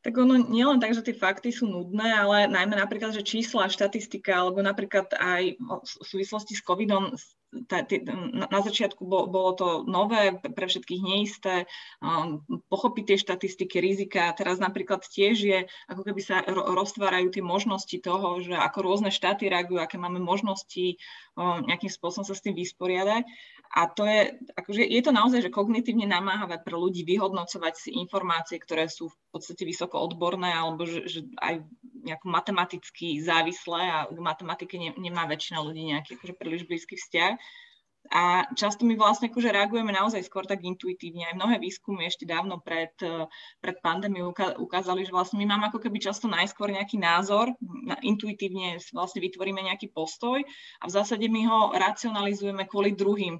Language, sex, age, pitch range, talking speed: Slovak, female, 20-39, 180-210 Hz, 165 wpm